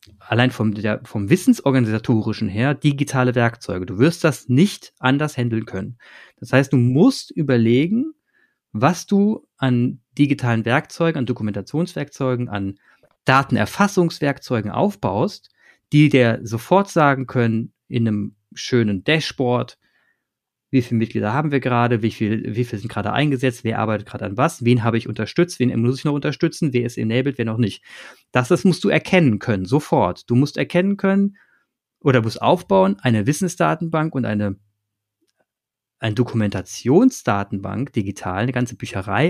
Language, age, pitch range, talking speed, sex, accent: German, 30-49, 115-150 Hz, 145 wpm, male, German